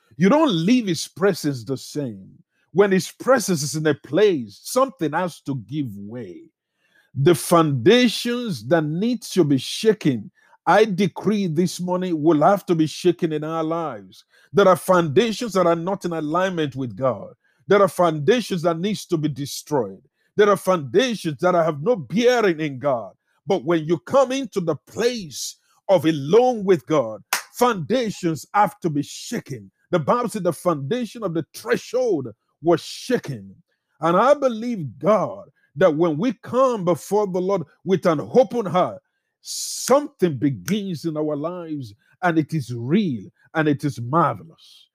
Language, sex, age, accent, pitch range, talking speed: English, male, 50-69, Nigerian, 150-205 Hz, 160 wpm